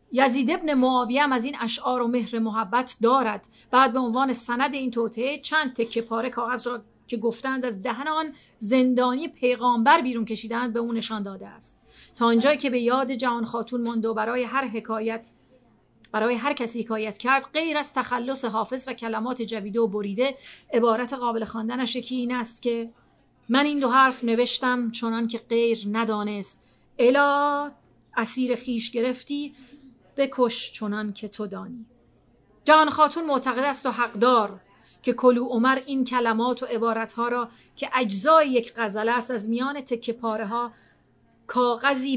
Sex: female